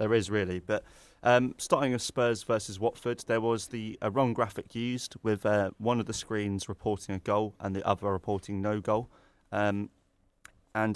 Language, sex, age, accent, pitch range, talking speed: English, male, 20-39, British, 100-110 Hz, 185 wpm